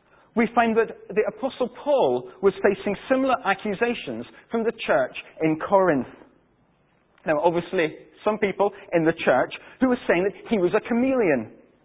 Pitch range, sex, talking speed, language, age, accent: 185-240 Hz, male, 150 wpm, English, 40-59, British